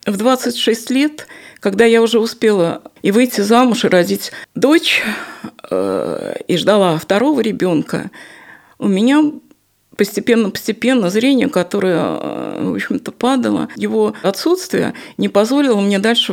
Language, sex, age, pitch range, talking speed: Russian, female, 50-69, 205-275 Hz, 115 wpm